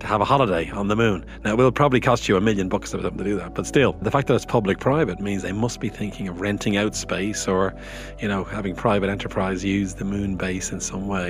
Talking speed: 260 wpm